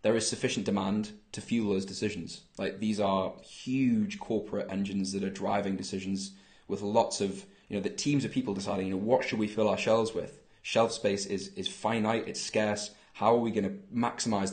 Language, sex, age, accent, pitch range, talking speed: English, male, 20-39, British, 95-115 Hz, 205 wpm